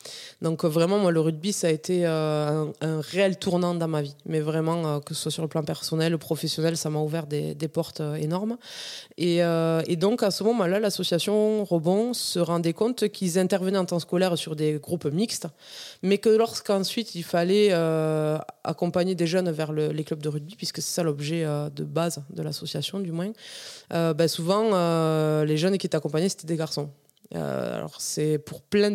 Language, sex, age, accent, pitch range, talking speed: French, female, 20-39, French, 155-190 Hz, 205 wpm